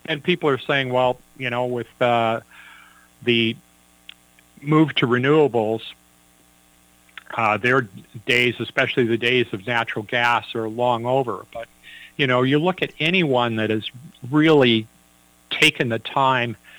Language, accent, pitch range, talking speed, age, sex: English, American, 110-135 Hz, 135 wpm, 50-69, male